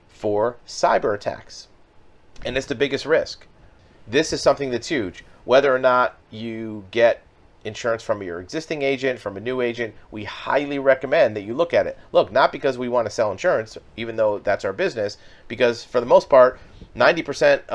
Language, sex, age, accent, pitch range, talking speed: English, male, 30-49, American, 105-125 Hz, 180 wpm